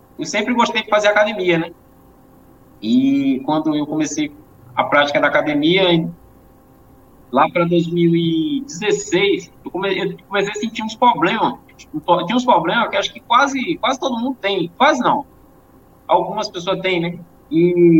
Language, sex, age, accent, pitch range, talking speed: Portuguese, male, 20-39, Brazilian, 170-255 Hz, 140 wpm